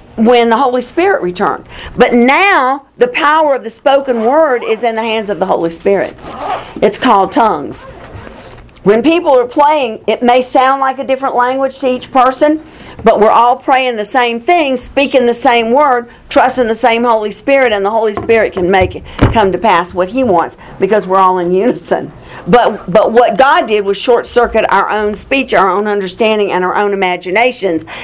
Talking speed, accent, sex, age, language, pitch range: 195 wpm, American, female, 50-69, English, 195-255 Hz